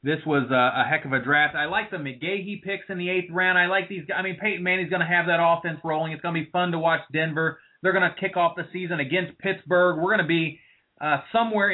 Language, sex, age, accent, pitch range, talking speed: English, male, 30-49, American, 155-205 Hz, 270 wpm